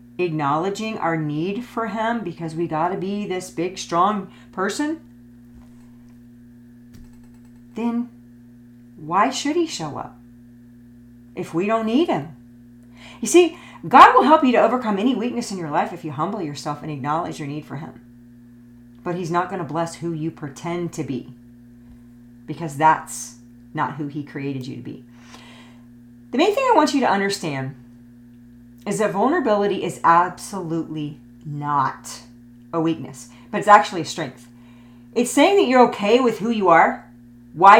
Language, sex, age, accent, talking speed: English, female, 40-59, American, 155 wpm